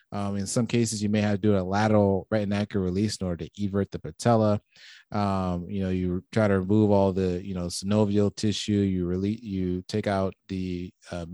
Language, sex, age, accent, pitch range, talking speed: English, male, 20-39, American, 95-110 Hz, 205 wpm